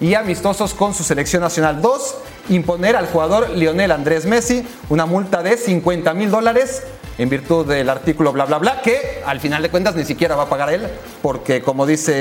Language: English